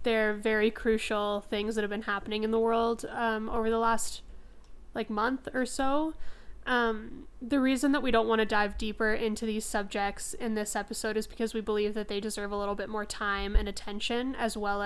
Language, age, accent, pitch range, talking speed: English, 20-39, American, 210-230 Hz, 205 wpm